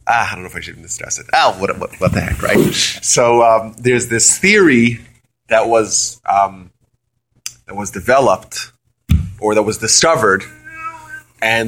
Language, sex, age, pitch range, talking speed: English, male, 30-49, 115-140 Hz, 170 wpm